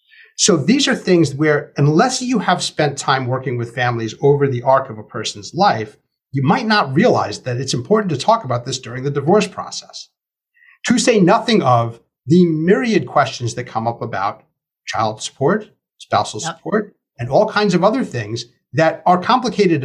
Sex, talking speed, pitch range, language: male, 180 wpm, 125-180 Hz, English